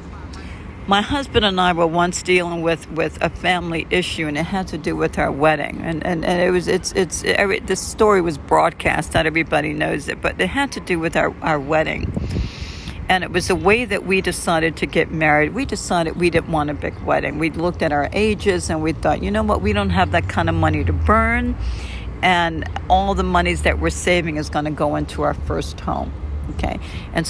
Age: 60-79